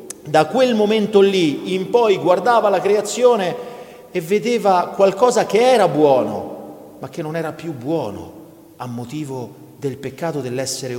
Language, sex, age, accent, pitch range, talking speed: Italian, male, 40-59, native, 120-170 Hz, 140 wpm